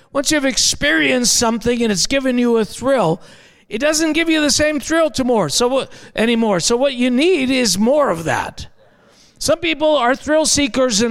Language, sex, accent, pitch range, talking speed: English, male, American, 220-275 Hz, 175 wpm